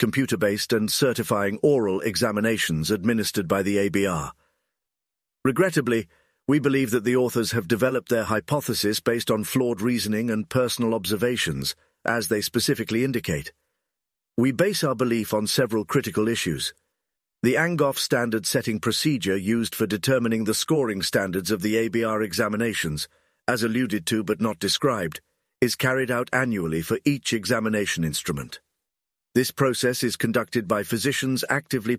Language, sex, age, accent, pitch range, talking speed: English, male, 50-69, British, 105-125 Hz, 140 wpm